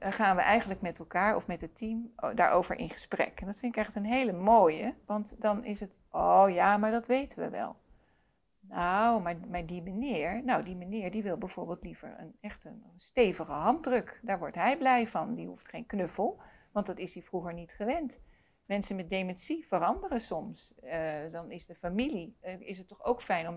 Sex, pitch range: female, 180-230 Hz